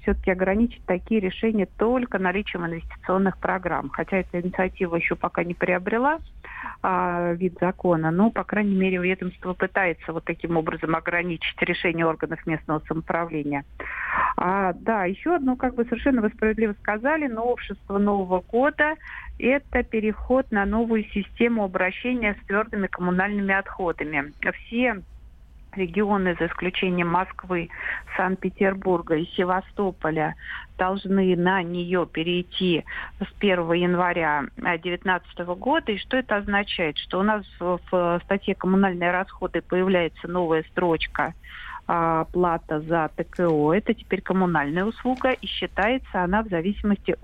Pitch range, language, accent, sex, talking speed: 175-205 Hz, Russian, native, female, 125 wpm